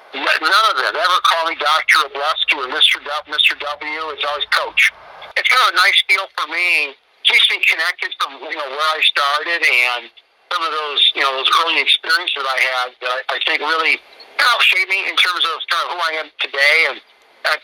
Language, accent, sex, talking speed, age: English, American, male, 240 wpm, 50-69